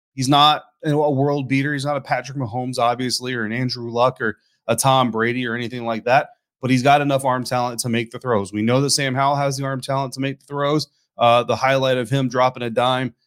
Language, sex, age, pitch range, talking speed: English, male, 30-49, 120-145 Hz, 245 wpm